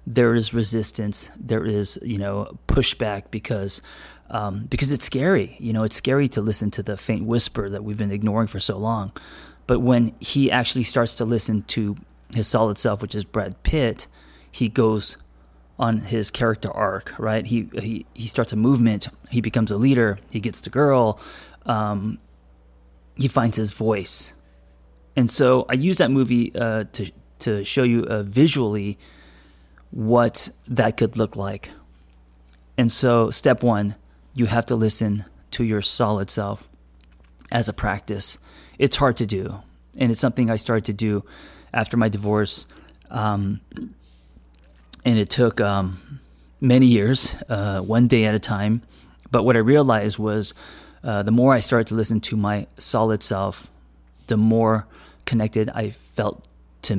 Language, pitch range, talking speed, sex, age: English, 100-120 Hz, 160 wpm, male, 30-49